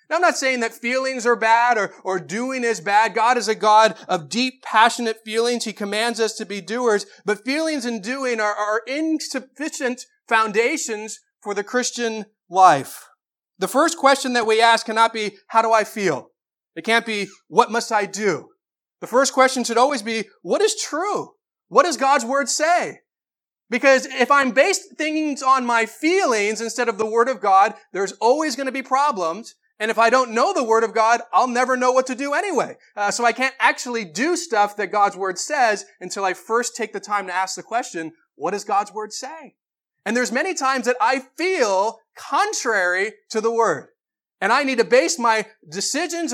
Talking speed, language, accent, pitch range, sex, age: 195 wpm, English, American, 205-265 Hz, male, 30-49